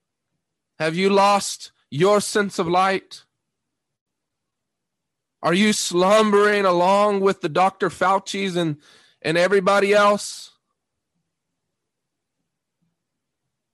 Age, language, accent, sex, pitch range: 40-59, English, American, male, 200-270 Hz